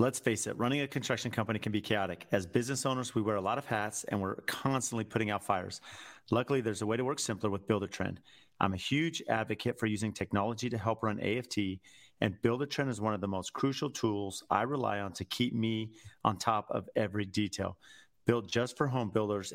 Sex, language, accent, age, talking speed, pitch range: male, English, American, 30-49, 215 wpm, 100-120 Hz